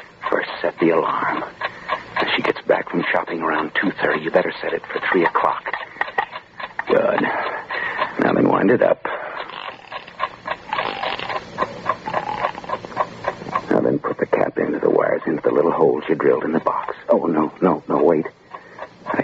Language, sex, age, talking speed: English, male, 60-79, 150 wpm